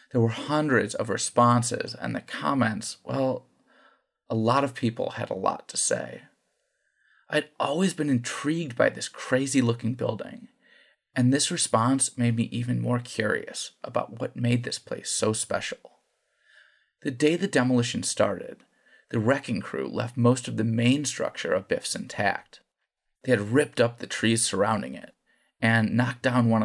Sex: male